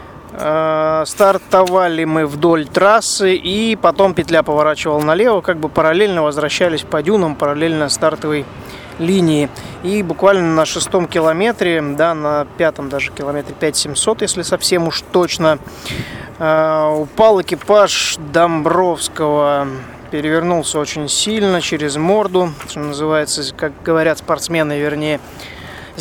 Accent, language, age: native, Russian, 20-39